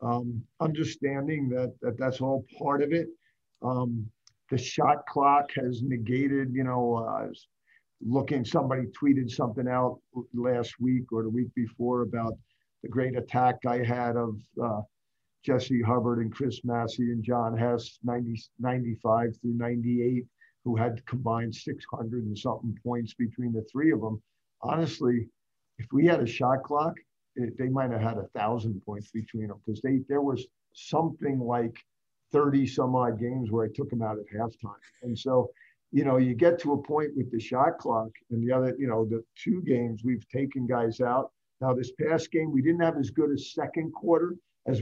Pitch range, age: 115-135 Hz, 50-69